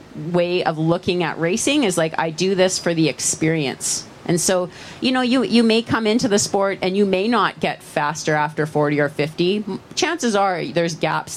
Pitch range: 155-200 Hz